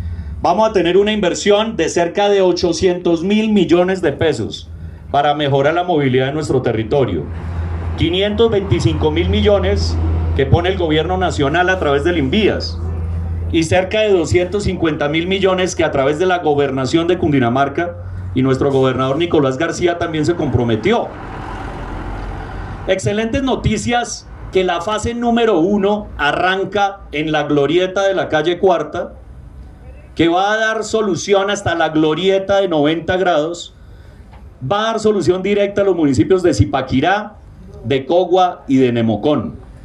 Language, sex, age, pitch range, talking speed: Spanish, male, 40-59, 120-195 Hz, 145 wpm